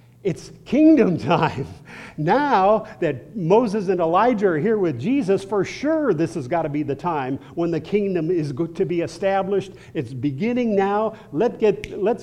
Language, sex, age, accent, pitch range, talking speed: English, male, 50-69, American, 125-175 Hz, 155 wpm